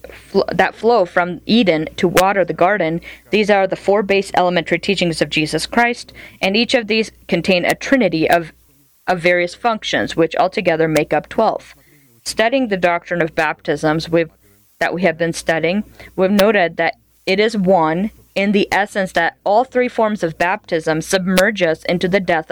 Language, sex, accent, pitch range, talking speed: English, female, American, 165-195 Hz, 175 wpm